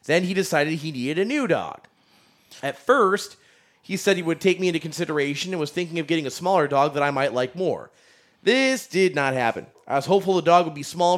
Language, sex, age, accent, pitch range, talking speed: English, male, 30-49, American, 150-185 Hz, 230 wpm